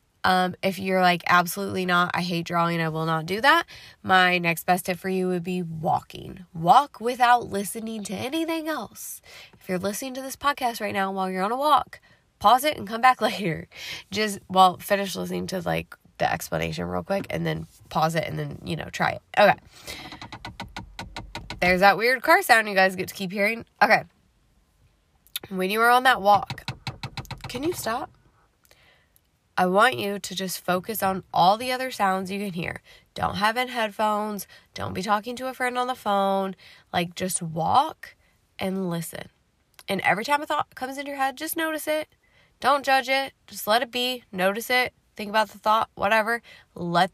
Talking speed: 190 wpm